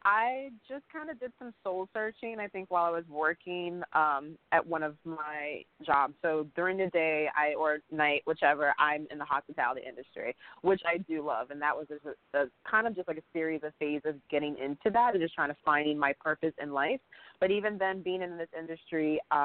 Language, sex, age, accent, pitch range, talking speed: English, female, 20-39, American, 150-180 Hz, 205 wpm